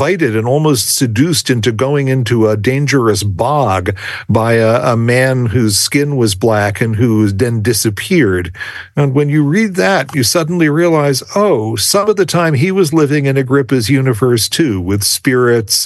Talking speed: 165 wpm